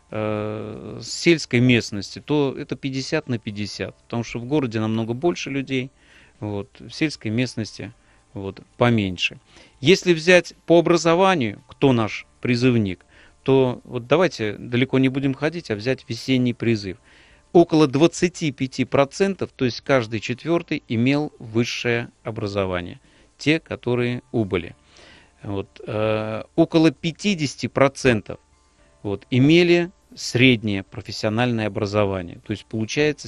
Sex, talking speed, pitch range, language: male, 105 wpm, 105-140 Hz, Russian